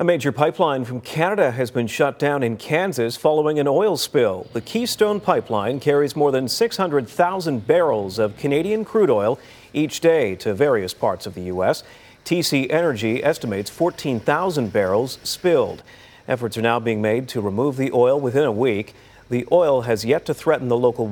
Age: 40-59